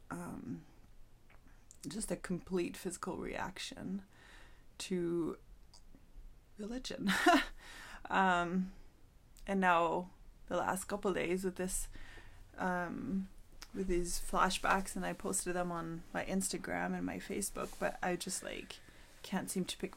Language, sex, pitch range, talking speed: English, female, 180-210 Hz, 115 wpm